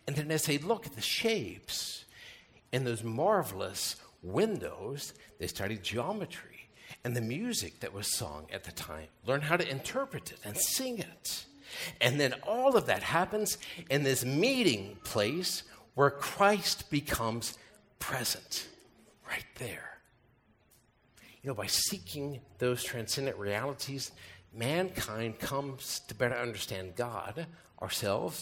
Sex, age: male, 50-69